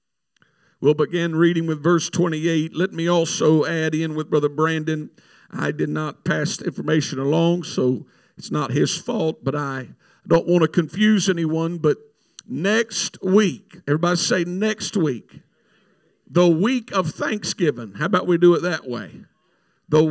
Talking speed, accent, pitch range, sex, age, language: 155 wpm, American, 150-185 Hz, male, 50-69, English